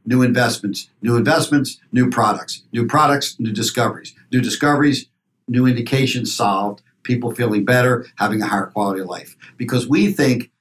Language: English